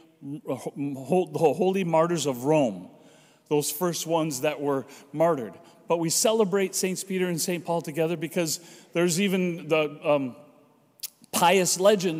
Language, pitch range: English, 155-195 Hz